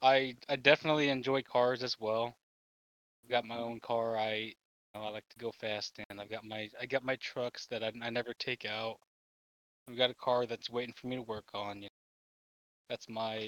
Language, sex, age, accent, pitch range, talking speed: English, male, 20-39, American, 105-125 Hz, 210 wpm